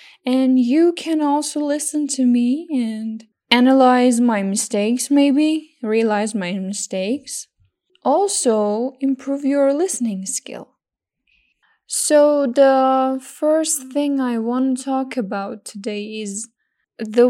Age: 10-29